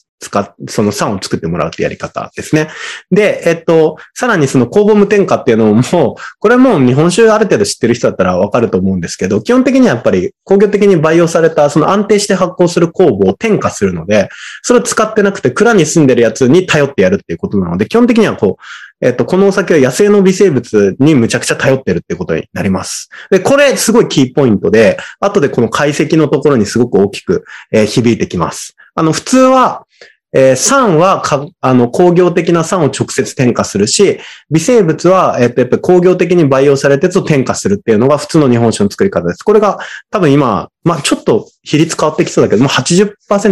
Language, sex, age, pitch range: Japanese, male, 20-39, 125-200 Hz